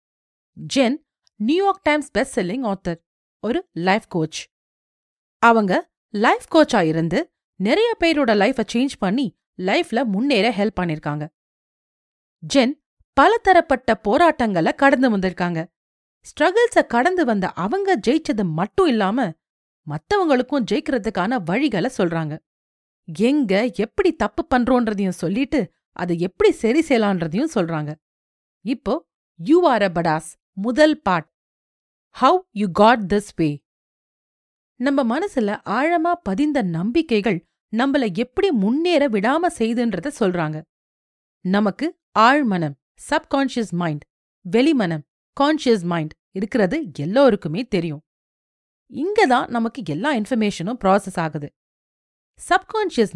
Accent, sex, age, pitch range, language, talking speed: native, female, 40-59, 180-285 Hz, Tamil, 95 wpm